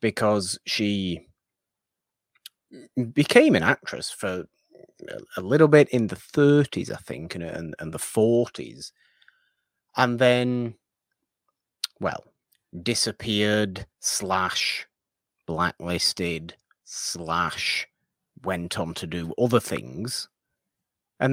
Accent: British